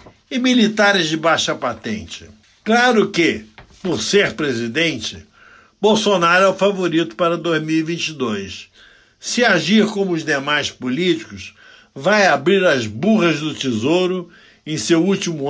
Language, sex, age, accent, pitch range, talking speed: Portuguese, male, 60-79, Brazilian, 125-190 Hz, 120 wpm